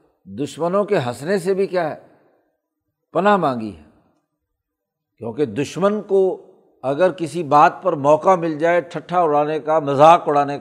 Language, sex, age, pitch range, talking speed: Urdu, male, 60-79, 150-195 Hz, 140 wpm